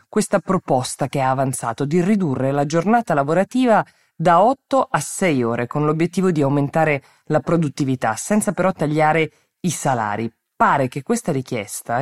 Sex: female